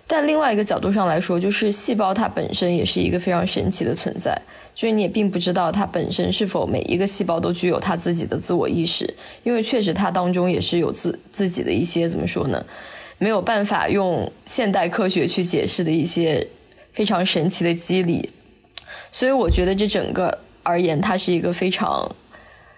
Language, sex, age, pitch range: Chinese, female, 20-39, 175-210 Hz